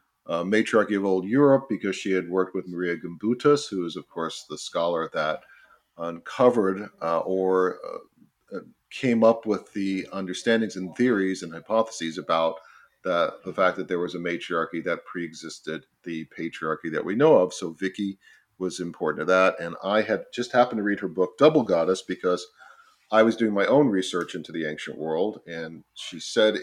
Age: 40-59